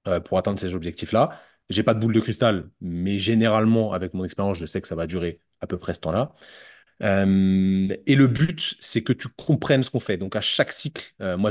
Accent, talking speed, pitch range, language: French, 230 wpm, 100-125 Hz, French